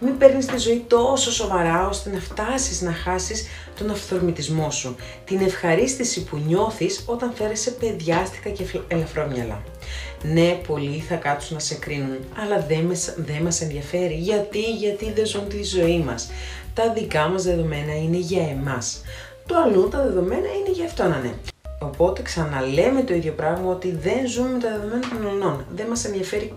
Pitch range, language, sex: 145-210 Hz, Greek, female